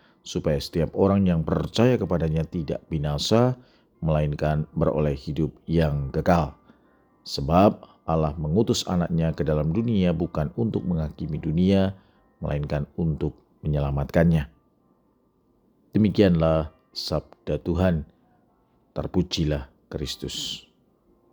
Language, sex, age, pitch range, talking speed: Indonesian, male, 40-59, 75-90 Hz, 90 wpm